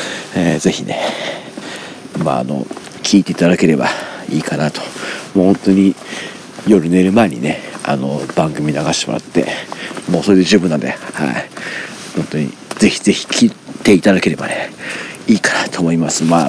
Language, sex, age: Japanese, male, 40-59